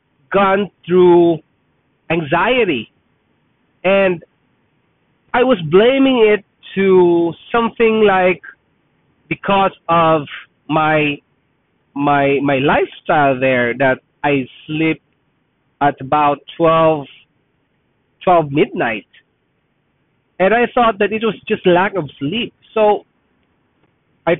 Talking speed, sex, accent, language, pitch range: 95 wpm, male, Filipino, English, 155-210 Hz